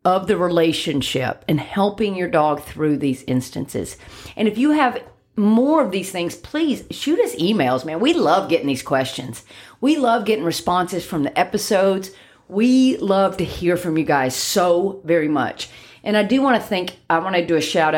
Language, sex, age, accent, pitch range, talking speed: English, female, 40-59, American, 150-195 Hz, 190 wpm